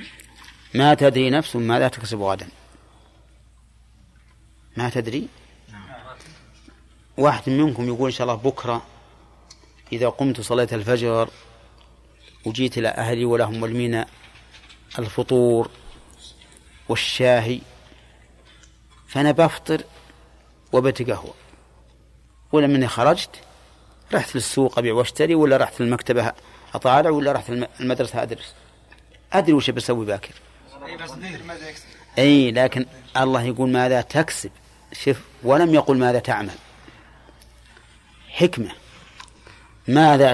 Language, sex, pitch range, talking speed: Arabic, male, 115-150 Hz, 90 wpm